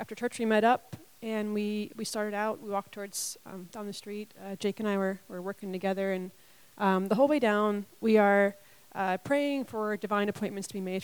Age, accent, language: 30-49, American, English